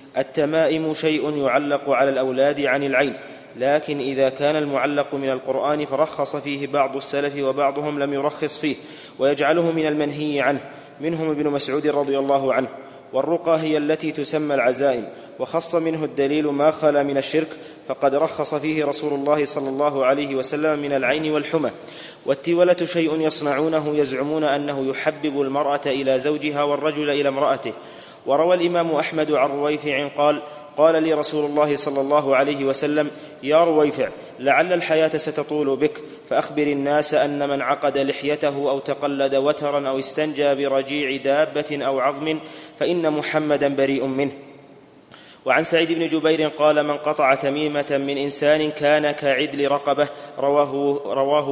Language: English